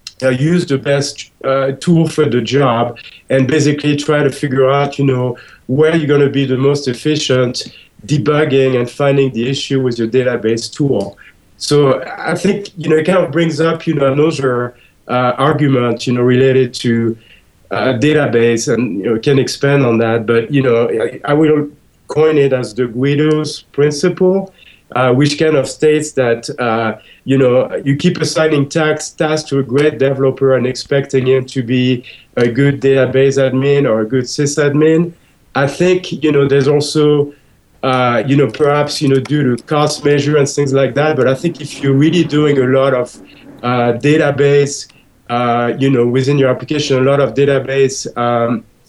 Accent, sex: French, male